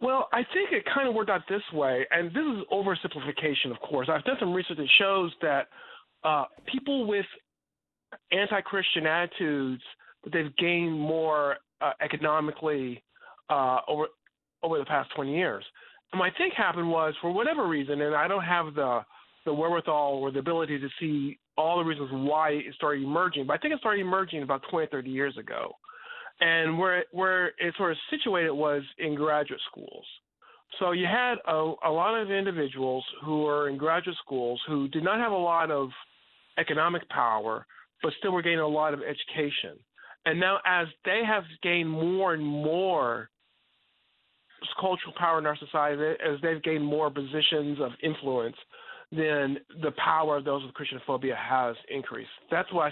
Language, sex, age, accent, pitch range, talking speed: English, male, 40-59, American, 150-185 Hz, 170 wpm